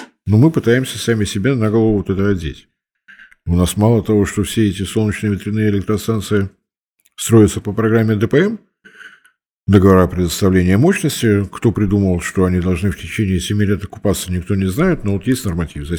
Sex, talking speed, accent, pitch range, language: male, 170 wpm, native, 90-110 Hz, Russian